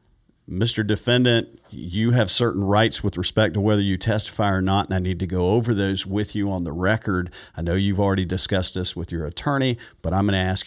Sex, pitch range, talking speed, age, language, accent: male, 95-120 Hz, 225 wpm, 50-69, English, American